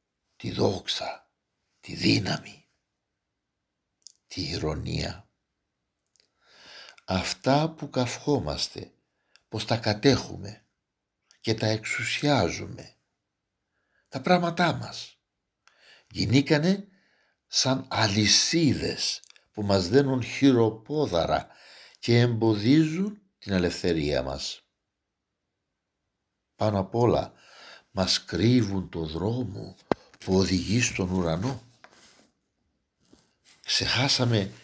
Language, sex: Greek, male